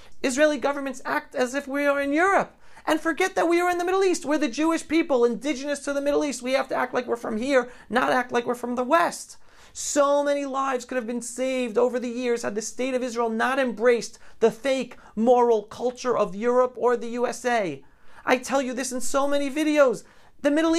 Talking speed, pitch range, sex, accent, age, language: 225 wpm, 230-280 Hz, male, American, 40-59, English